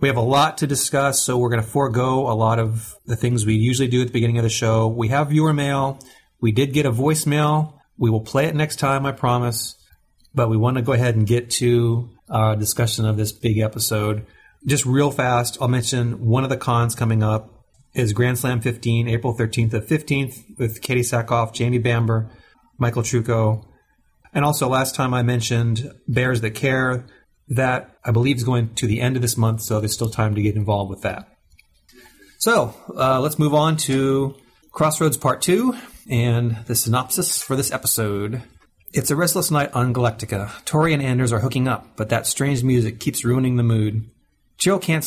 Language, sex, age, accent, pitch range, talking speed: English, male, 30-49, American, 115-135 Hz, 200 wpm